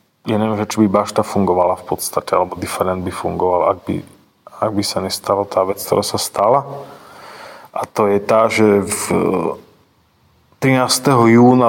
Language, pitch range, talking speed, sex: Slovak, 95-115 Hz, 160 wpm, male